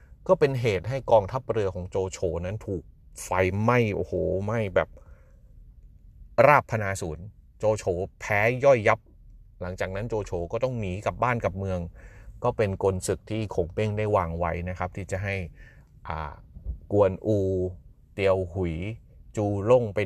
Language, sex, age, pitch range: Thai, male, 30-49, 85-115 Hz